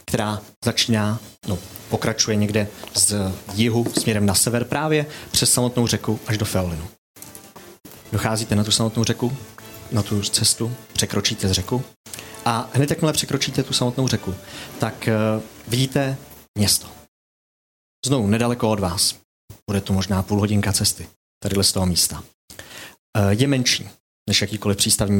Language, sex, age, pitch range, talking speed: Czech, male, 30-49, 100-120 Hz, 140 wpm